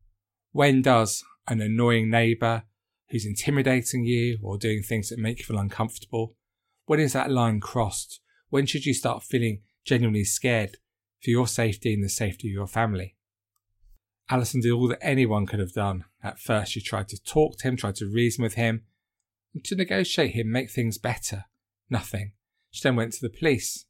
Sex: male